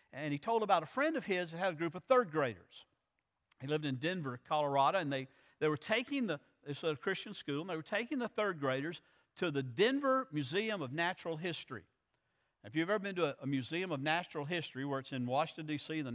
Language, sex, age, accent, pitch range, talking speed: English, male, 50-69, American, 145-205 Hz, 230 wpm